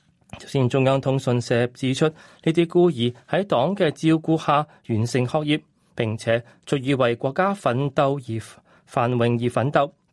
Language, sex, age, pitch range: Chinese, male, 20-39, 115-150 Hz